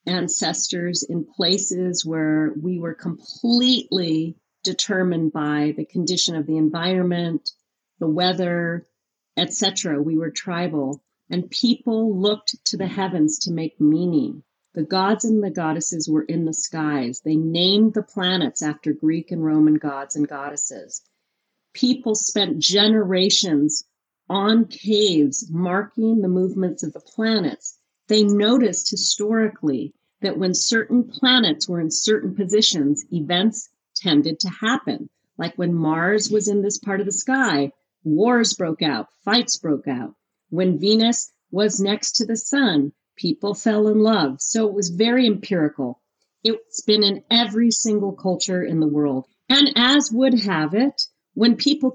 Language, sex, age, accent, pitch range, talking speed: English, female, 40-59, American, 160-220 Hz, 140 wpm